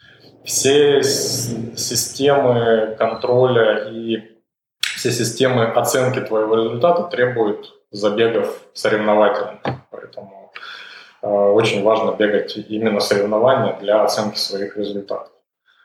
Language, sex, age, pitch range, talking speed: Russian, male, 20-39, 105-130 Hz, 85 wpm